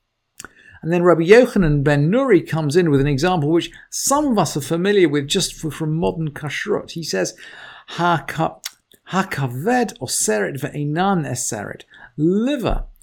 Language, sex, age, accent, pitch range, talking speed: English, male, 50-69, British, 125-170 Hz, 120 wpm